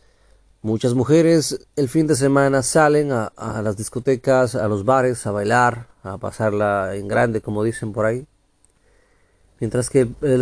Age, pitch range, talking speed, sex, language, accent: 40-59, 110-140 Hz, 155 wpm, male, Spanish, Mexican